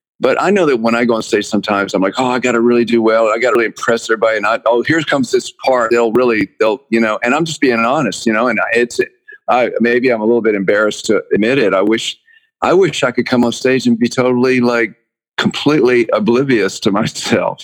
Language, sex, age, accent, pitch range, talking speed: English, male, 50-69, American, 105-130 Hz, 250 wpm